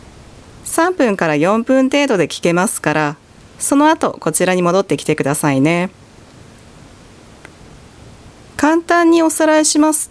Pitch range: 170-280 Hz